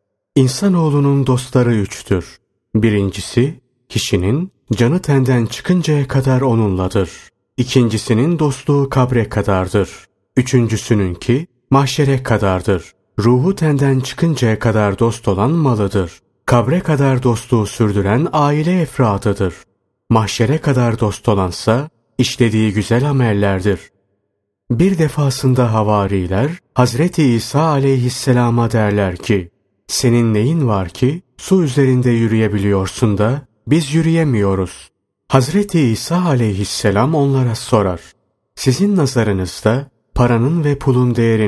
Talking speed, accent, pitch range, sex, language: 95 wpm, native, 105-135 Hz, male, Turkish